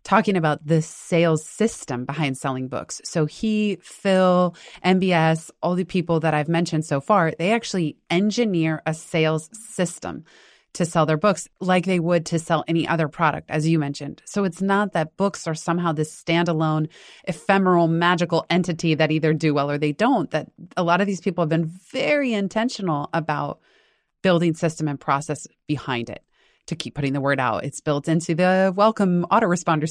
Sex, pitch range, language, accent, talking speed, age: female, 155-190 Hz, English, American, 175 wpm, 30-49